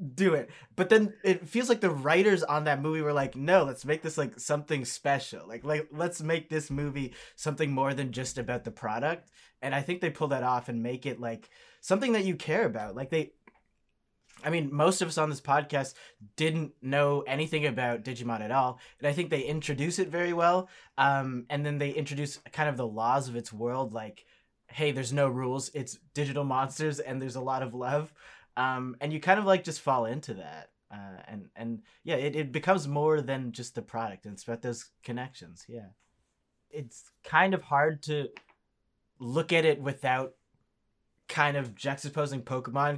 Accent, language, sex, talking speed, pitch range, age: American, English, male, 195 wpm, 125-155 Hz, 20-39